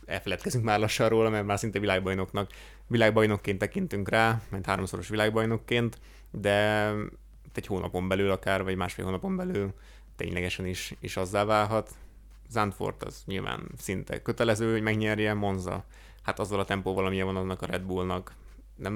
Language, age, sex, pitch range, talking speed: Hungarian, 20-39, male, 95-110 Hz, 145 wpm